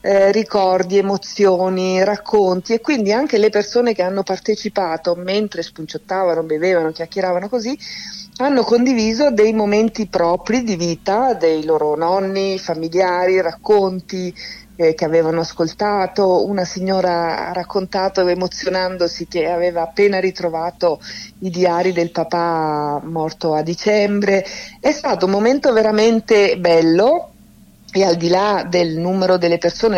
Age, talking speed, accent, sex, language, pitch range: 50-69, 125 wpm, native, female, Italian, 165-200 Hz